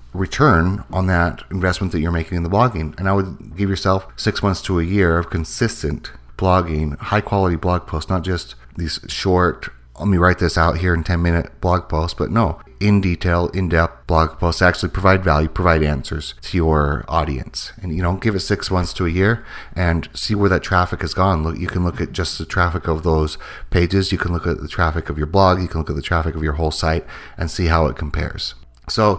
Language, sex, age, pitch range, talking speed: English, male, 30-49, 80-105 Hz, 230 wpm